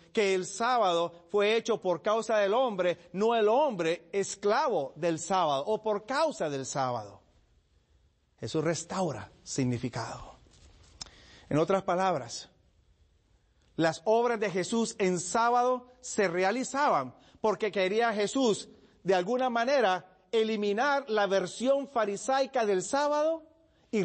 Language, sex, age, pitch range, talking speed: Spanish, male, 40-59, 140-205 Hz, 115 wpm